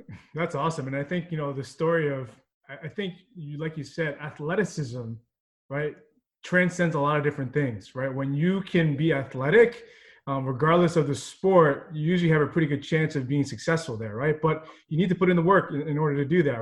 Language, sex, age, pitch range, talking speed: English, male, 20-39, 145-175 Hz, 220 wpm